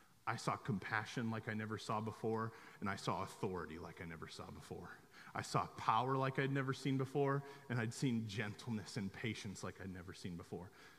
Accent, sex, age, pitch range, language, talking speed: American, male, 30-49, 125-155 Hz, English, 195 wpm